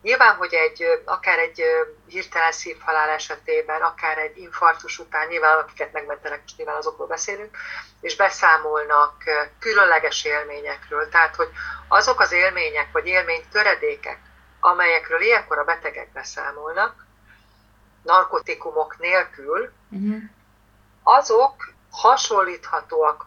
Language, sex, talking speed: Hungarian, female, 100 wpm